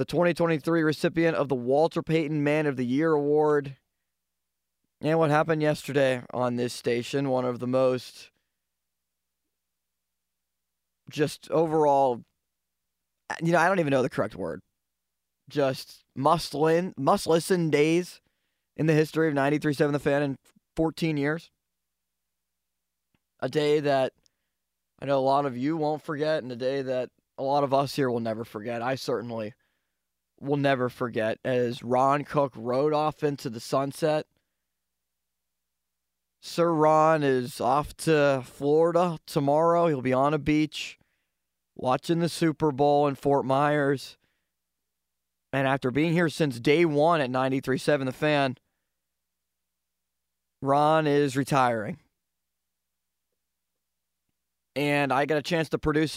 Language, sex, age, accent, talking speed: English, male, 20-39, American, 135 wpm